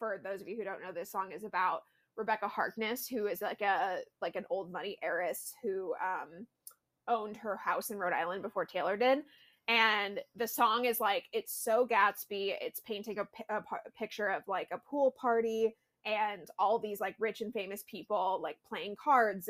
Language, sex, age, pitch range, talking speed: English, female, 20-39, 205-240 Hz, 200 wpm